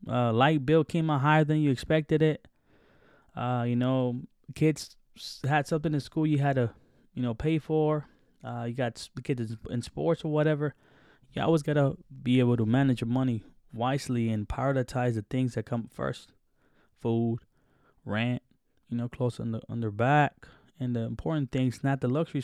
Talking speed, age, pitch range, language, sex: 180 wpm, 10-29, 120-145 Hz, English, male